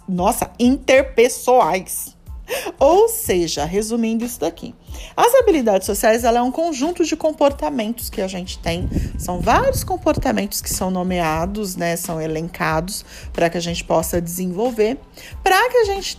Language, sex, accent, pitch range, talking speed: Portuguese, female, Brazilian, 195-300 Hz, 145 wpm